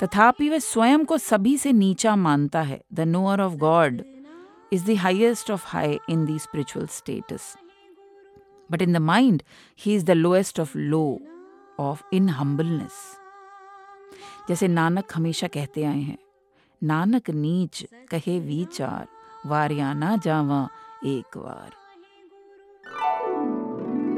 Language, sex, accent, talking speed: English, female, Indian, 110 wpm